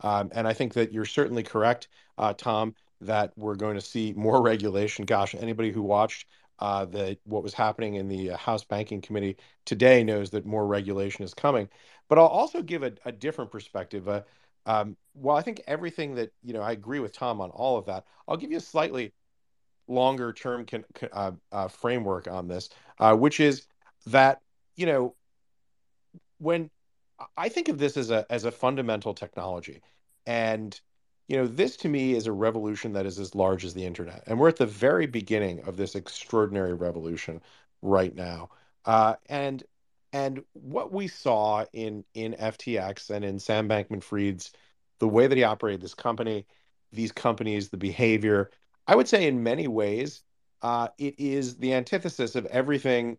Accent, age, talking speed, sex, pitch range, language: American, 40-59, 180 wpm, male, 100-125 Hz, English